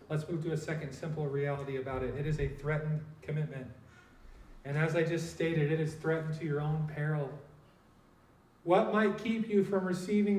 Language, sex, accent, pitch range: English, male, American, 150-210 Hz